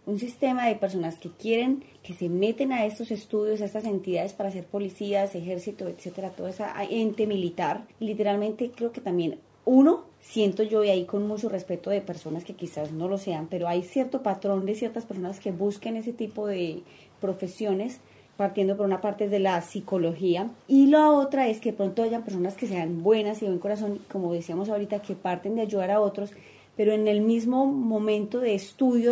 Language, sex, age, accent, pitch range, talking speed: English, female, 30-49, Colombian, 190-225 Hz, 190 wpm